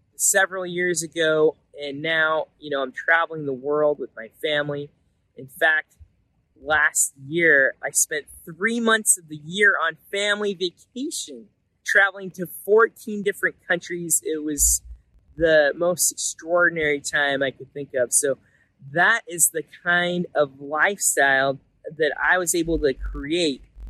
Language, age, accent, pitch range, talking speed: English, 20-39, American, 140-180 Hz, 140 wpm